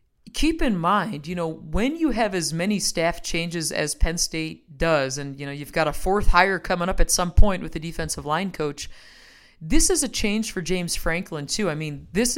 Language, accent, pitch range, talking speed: English, American, 150-195 Hz, 220 wpm